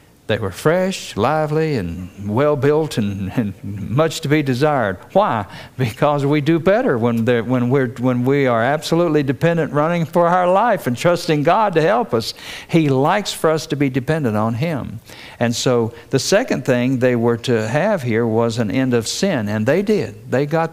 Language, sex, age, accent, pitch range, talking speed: English, male, 60-79, American, 115-150 Hz, 180 wpm